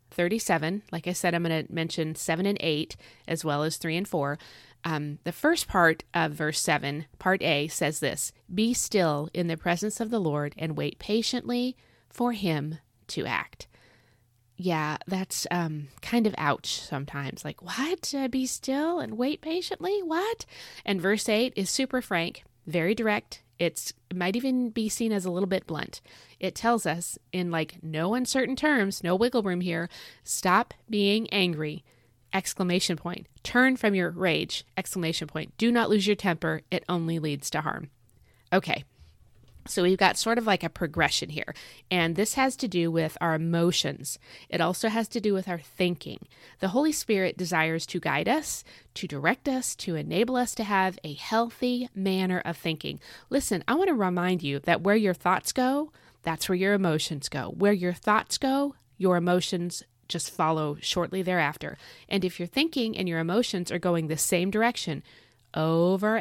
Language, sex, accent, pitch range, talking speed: English, female, American, 155-215 Hz, 180 wpm